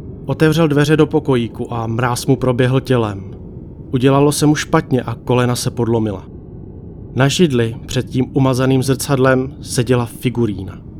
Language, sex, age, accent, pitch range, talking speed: Czech, male, 30-49, native, 115-135 Hz, 135 wpm